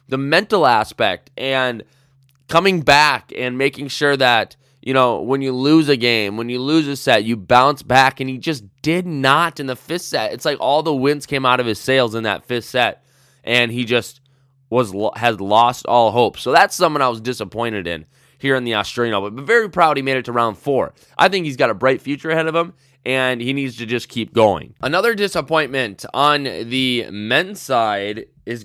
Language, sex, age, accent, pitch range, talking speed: English, male, 20-39, American, 110-140 Hz, 210 wpm